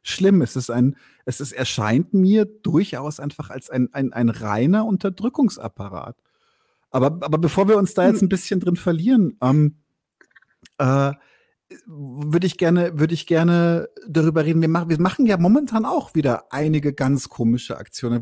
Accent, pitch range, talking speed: German, 140-205 Hz, 160 wpm